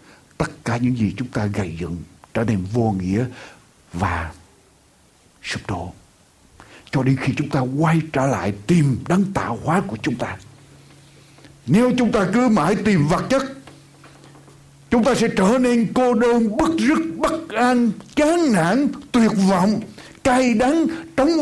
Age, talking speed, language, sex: 60-79, 155 wpm, Vietnamese, male